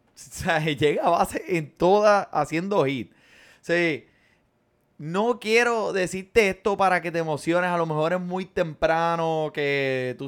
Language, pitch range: Spanish, 145-180 Hz